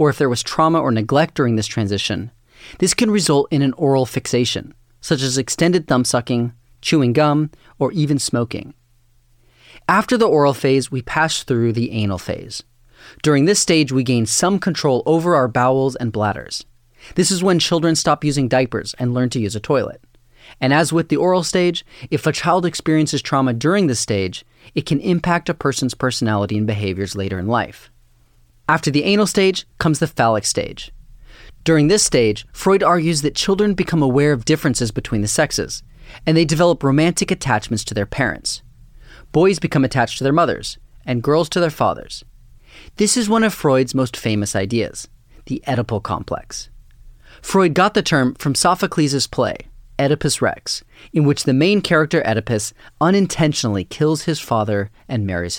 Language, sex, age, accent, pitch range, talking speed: English, male, 30-49, American, 120-160 Hz, 175 wpm